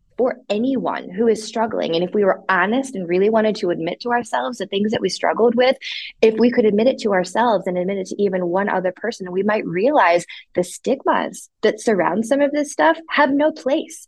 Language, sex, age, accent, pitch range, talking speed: English, female, 20-39, American, 185-240 Hz, 215 wpm